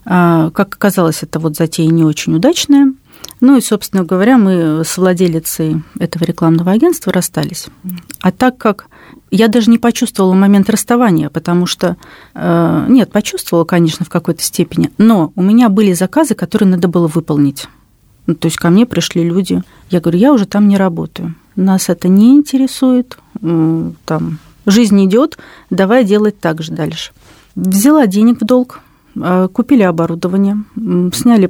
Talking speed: 150 wpm